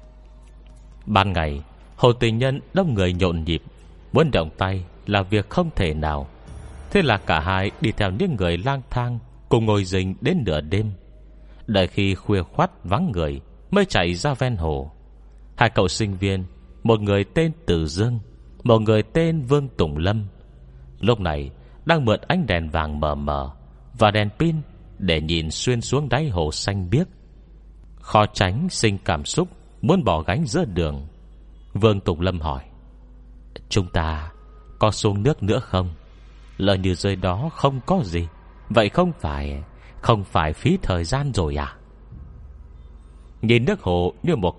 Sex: male